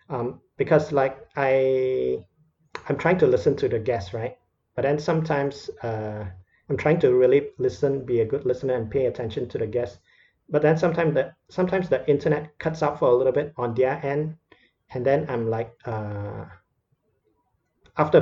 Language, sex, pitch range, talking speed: English, male, 120-150 Hz, 175 wpm